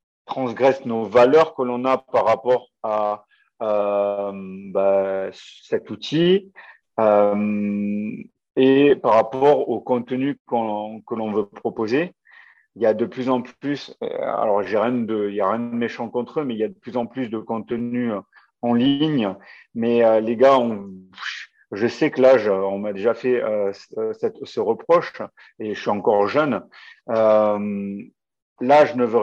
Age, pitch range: 40-59, 105-130 Hz